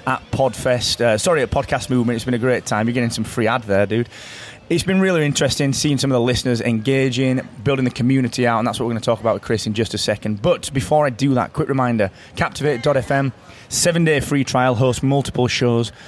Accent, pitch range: British, 110-130 Hz